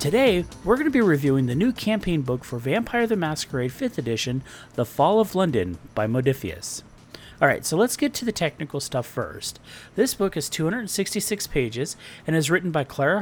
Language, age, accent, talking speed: English, 40-59, American, 185 wpm